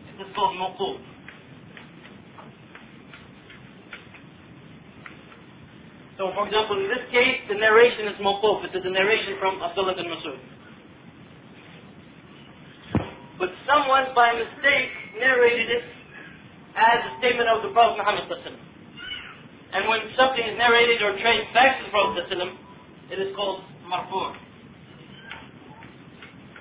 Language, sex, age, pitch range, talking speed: English, male, 40-59, 195-245 Hz, 115 wpm